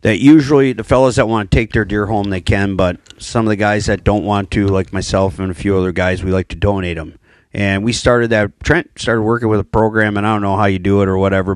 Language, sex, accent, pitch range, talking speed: English, male, American, 90-115 Hz, 280 wpm